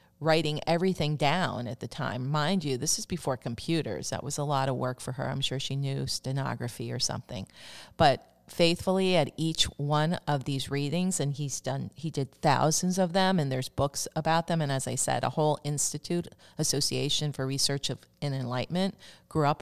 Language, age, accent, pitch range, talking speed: English, 40-59, American, 130-150 Hz, 190 wpm